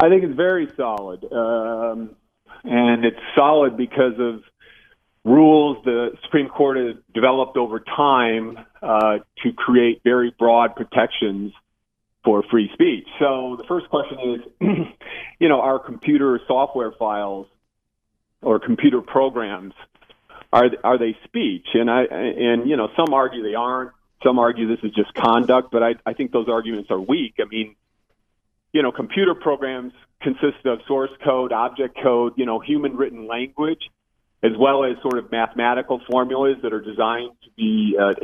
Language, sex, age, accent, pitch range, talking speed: English, male, 40-59, American, 115-145 Hz, 155 wpm